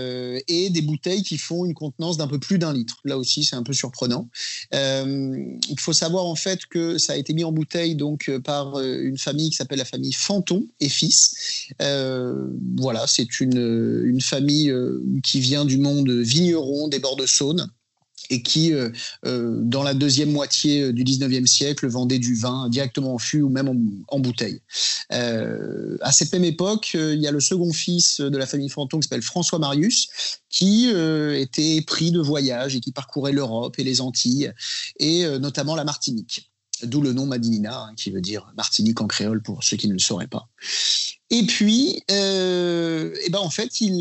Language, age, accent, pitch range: French, 30-49, French, 130-165 Hz